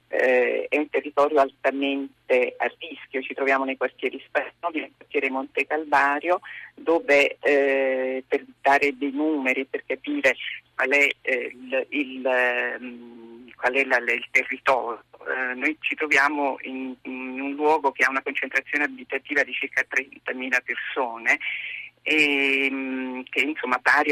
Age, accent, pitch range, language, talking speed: 40-59, native, 130-155 Hz, Italian, 120 wpm